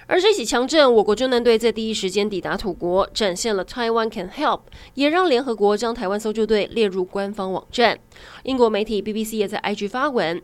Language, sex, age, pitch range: Chinese, female, 20-39, 200-255 Hz